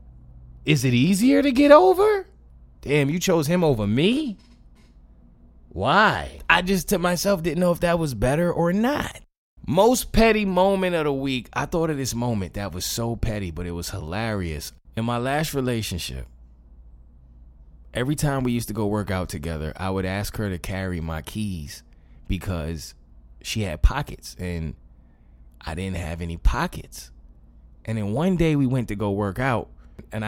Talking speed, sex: 170 wpm, male